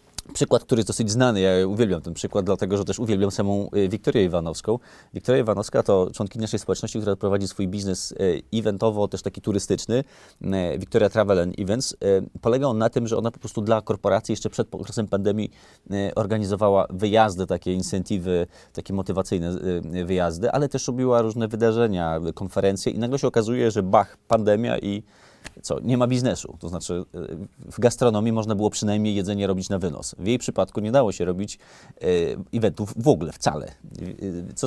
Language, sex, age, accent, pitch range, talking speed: Polish, male, 30-49, native, 95-120 Hz, 165 wpm